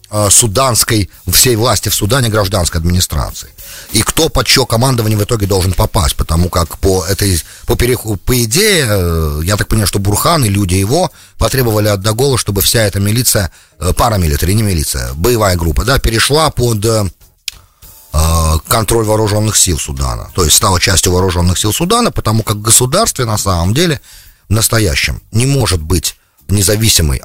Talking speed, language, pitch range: 155 wpm, English, 90-120 Hz